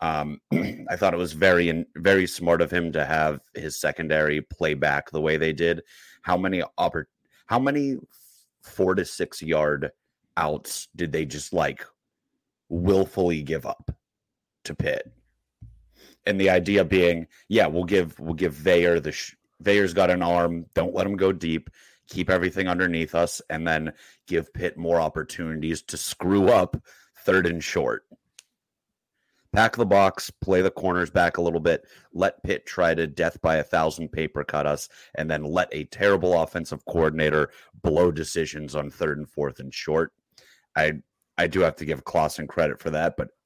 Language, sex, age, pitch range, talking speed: English, male, 30-49, 75-95 Hz, 165 wpm